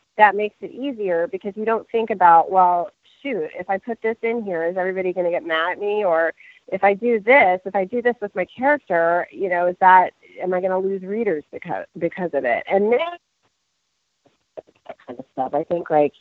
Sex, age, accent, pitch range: female, 30-49, American, 170-225 Hz